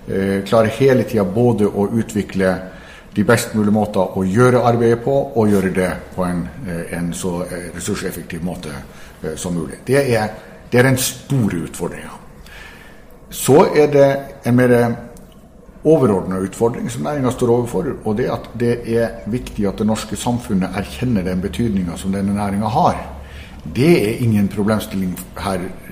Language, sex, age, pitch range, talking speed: English, male, 60-79, 95-115 Hz, 155 wpm